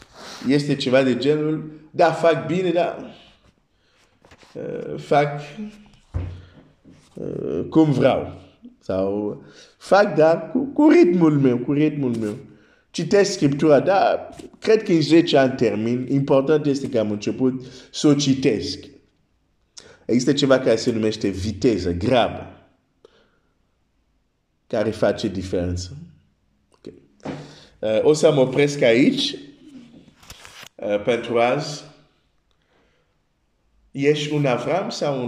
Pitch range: 95-150 Hz